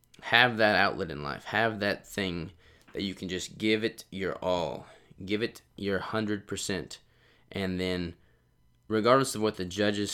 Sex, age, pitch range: male, 20-39, 90-105 Hz